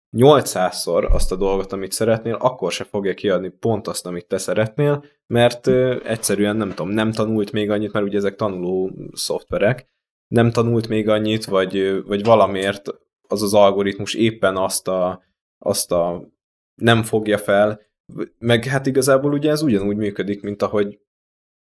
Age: 20-39